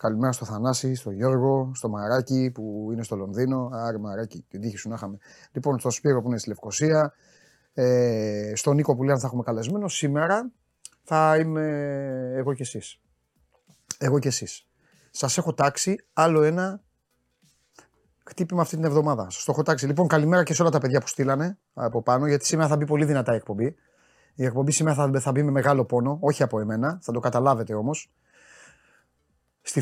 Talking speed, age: 185 wpm, 30-49